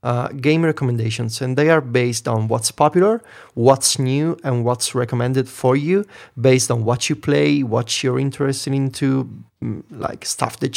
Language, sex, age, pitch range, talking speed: English, male, 30-49, 115-135 Hz, 160 wpm